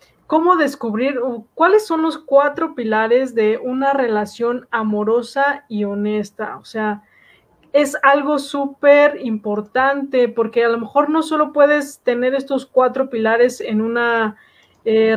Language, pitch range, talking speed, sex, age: Spanish, 225-280 Hz, 130 wpm, female, 20-39